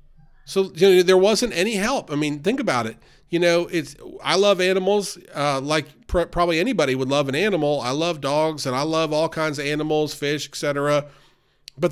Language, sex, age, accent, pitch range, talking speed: English, male, 40-59, American, 135-180 Hz, 190 wpm